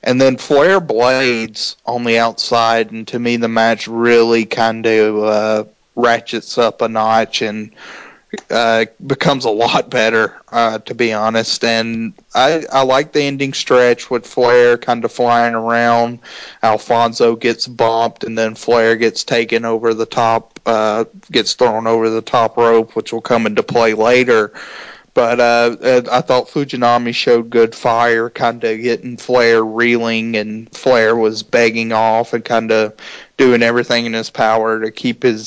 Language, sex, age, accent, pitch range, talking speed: English, male, 30-49, American, 115-120 Hz, 160 wpm